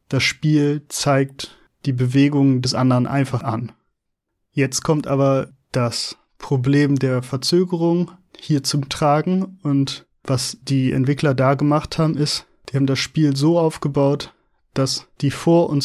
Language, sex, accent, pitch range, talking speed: German, male, German, 135-155 Hz, 140 wpm